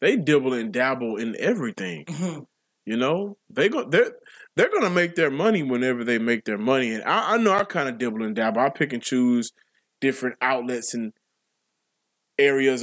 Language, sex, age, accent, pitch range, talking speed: English, male, 20-39, American, 125-180 Hz, 185 wpm